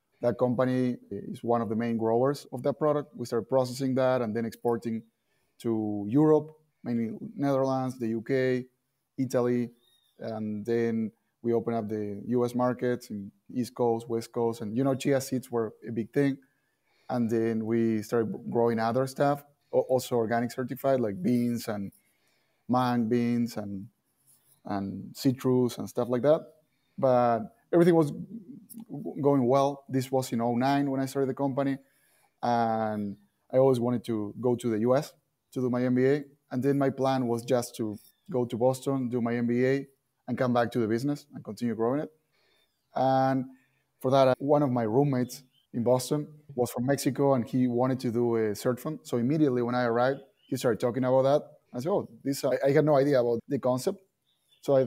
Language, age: English, 30-49